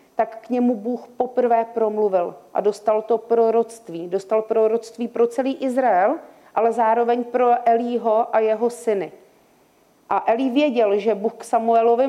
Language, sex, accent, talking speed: Czech, female, native, 145 wpm